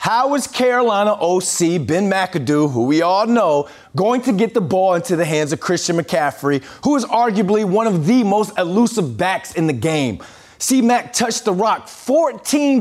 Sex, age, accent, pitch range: male, 30-49, American, 140-230 Hz